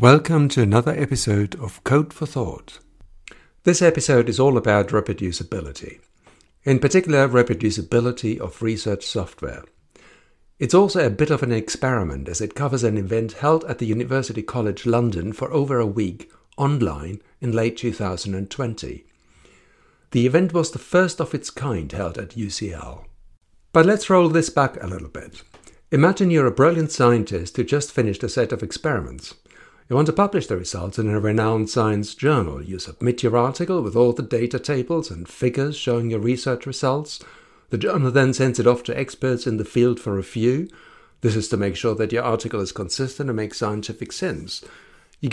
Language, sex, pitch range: English, male, 105-140 Hz